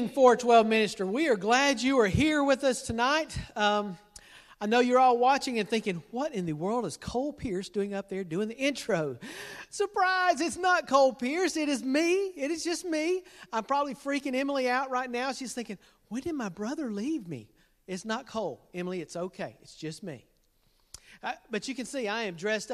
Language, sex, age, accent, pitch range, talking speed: English, male, 40-59, American, 195-265 Hz, 200 wpm